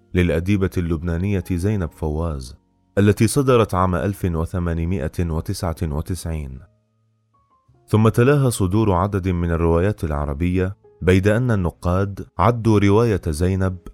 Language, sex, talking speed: Arabic, male, 90 wpm